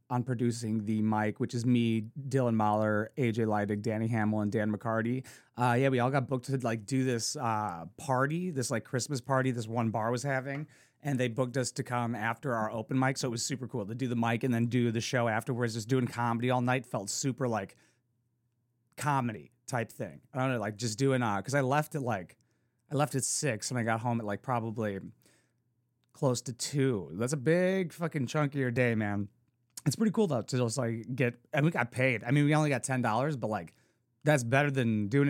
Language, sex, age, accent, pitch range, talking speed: English, male, 30-49, American, 115-130 Hz, 225 wpm